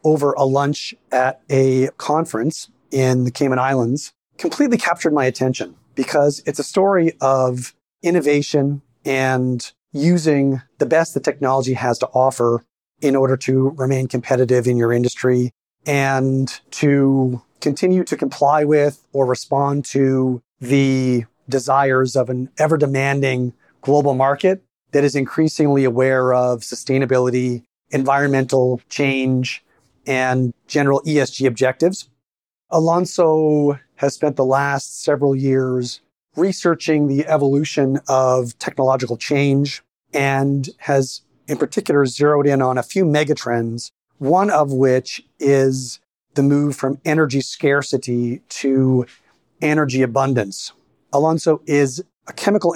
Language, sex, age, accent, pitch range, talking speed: English, male, 40-59, American, 130-145 Hz, 120 wpm